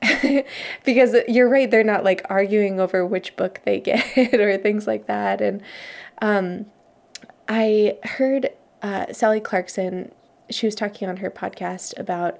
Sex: female